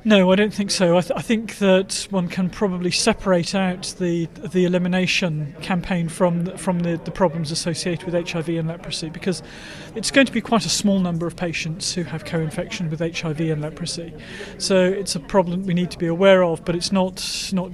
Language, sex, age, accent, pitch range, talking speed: English, male, 30-49, British, 170-190 Hz, 210 wpm